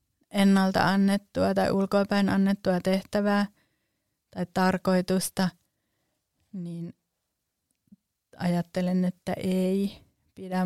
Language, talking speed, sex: Finnish, 75 wpm, female